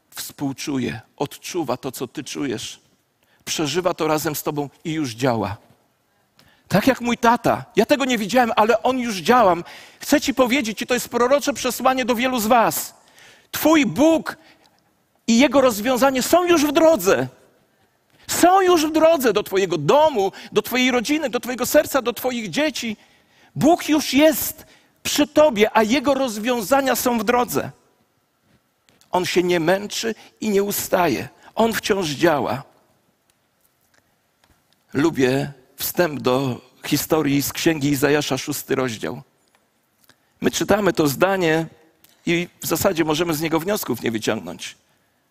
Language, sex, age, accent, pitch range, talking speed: Polish, male, 50-69, native, 160-255 Hz, 140 wpm